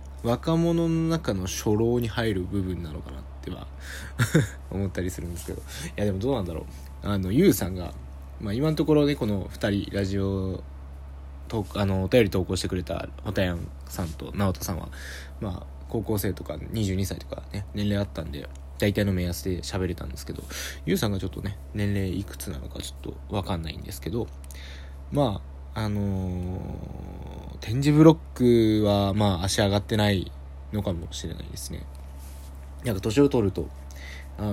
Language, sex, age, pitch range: Japanese, male, 20-39, 70-100 Hz